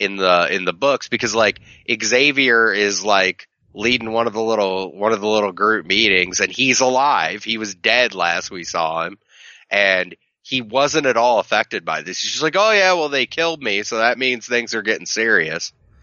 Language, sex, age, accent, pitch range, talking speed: English, male, 30-49, American, 100-130 Hz, 205 wpm